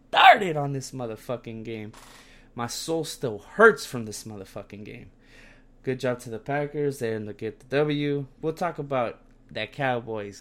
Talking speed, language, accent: 165 wpm, English, American